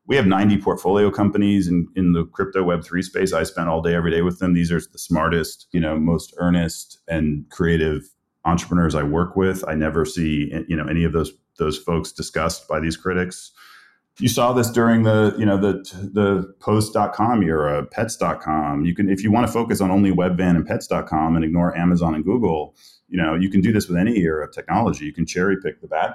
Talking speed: 215 wpm